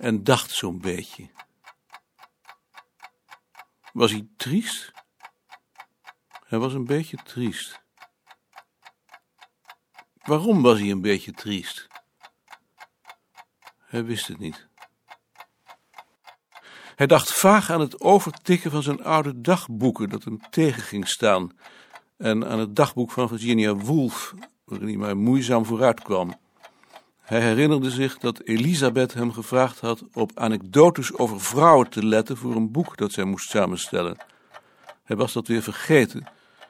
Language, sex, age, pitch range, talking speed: Dutch, male, 60-79, 110-155 Hz, 125 wpm